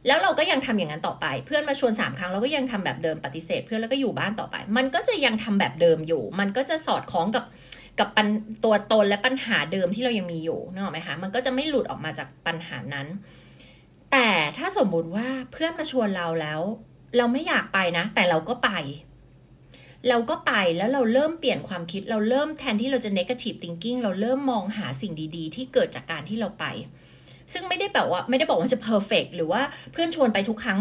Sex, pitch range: female, 170-250 Hz